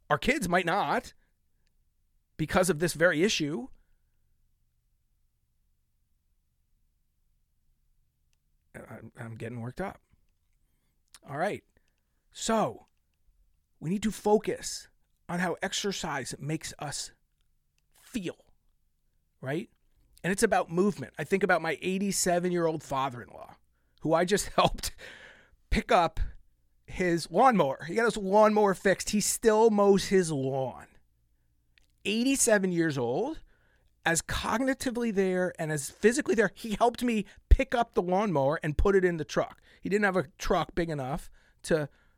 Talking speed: 120 wpm